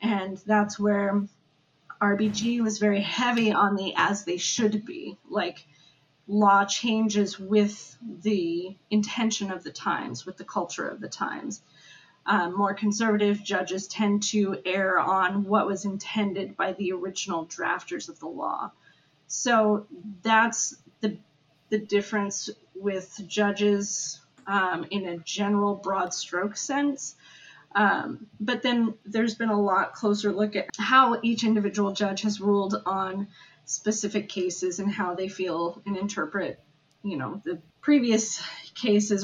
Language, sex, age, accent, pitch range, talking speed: English, female, 30-49, American, 185-215 Hz, 140 wpm